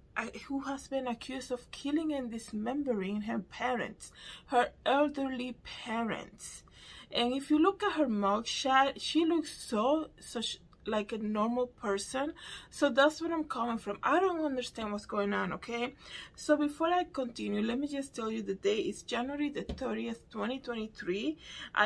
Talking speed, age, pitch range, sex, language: 160 wpm, 20-39, 210-270 Hz, female, English